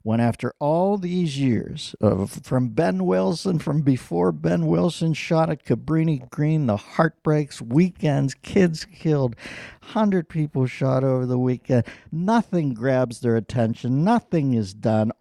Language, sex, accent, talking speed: English, male, American, 140 wpm